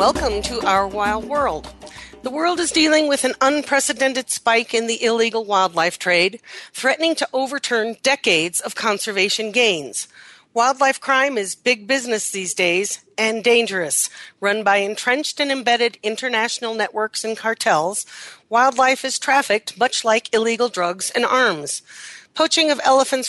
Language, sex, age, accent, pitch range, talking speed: English, female, 40-59, American, 210-265 Hz, 140 wpm